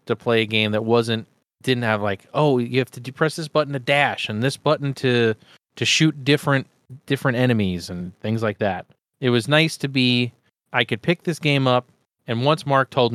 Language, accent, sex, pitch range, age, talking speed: English, American, male, 110-135 Hz, 30-49, 215 wpm